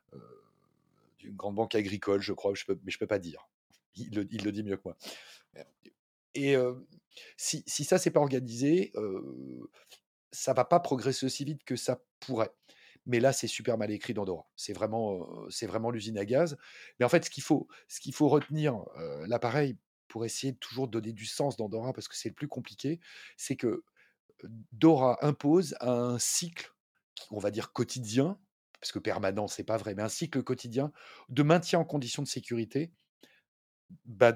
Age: 40-59